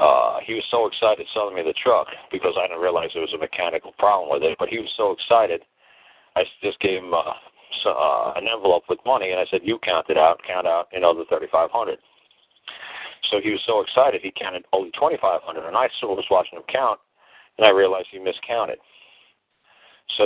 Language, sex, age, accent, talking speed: English, male, 40-59, American, 210 wpm